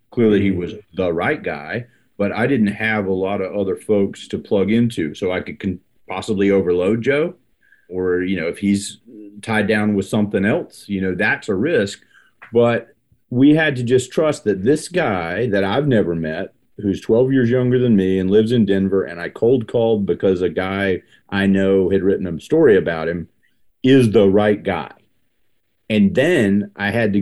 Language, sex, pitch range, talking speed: English, male, 95-110 Hz, 190 wpm